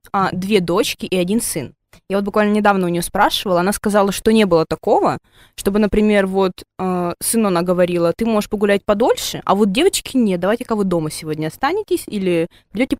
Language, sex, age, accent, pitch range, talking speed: Russian, female, 20-39, native, 180-235 Hz, 185 wpm